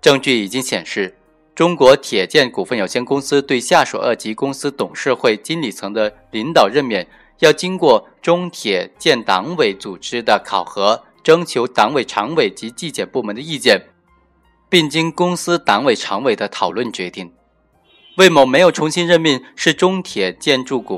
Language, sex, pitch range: Chinese, male, 115-160 Hz